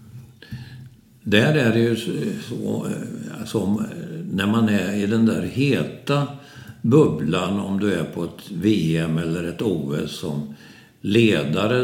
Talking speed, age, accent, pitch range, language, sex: 130 wpm, 60-79, native, 100-125 Hz, Swedish, male